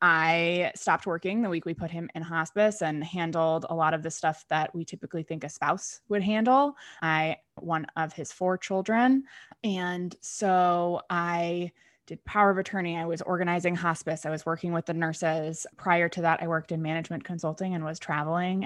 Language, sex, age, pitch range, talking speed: English, female, 20-39, 160-185 Hz, 190 wpm